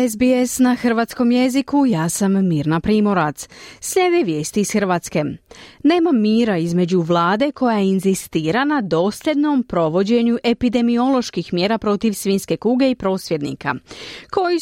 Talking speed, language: 120 wpm, Croatian